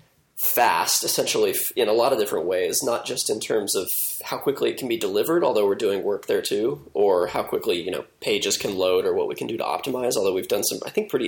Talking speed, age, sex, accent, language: 245 wpm, 20-39, male, American, English